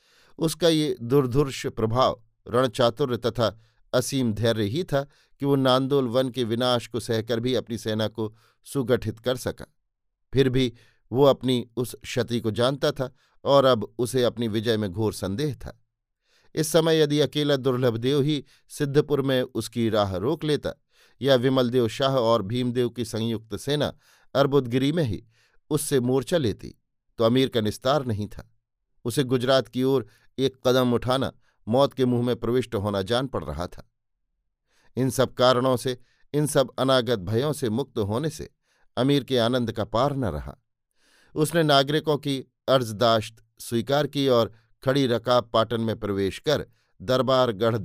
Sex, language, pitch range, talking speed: male, Hindi, 115-135 Hz, 160 wpm